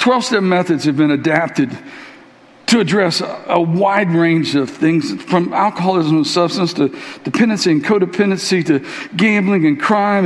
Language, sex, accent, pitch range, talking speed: English, male, American, 215-305 Hz, 145 wpm